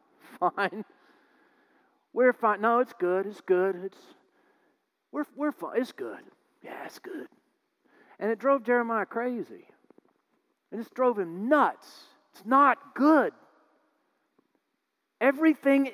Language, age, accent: English, 40-59, American